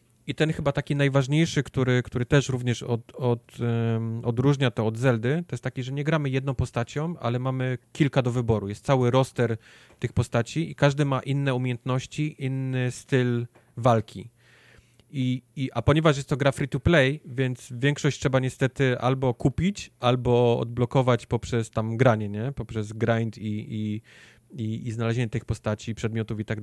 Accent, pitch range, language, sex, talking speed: native, 115-140 Hz, Polish, male, 160 wpm